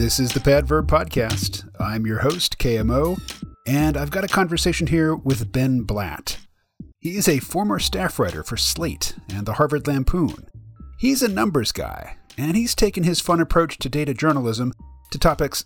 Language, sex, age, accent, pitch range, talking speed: English, male, 40-59, American, 110-155 Hz, 175 wpm